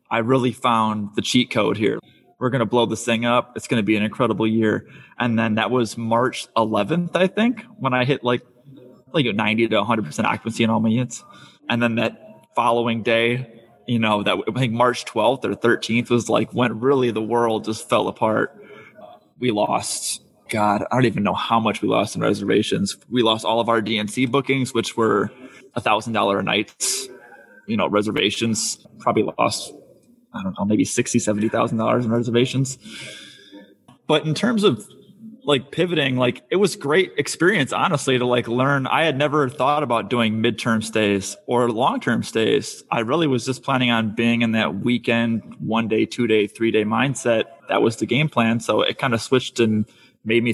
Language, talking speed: English, 195 wpm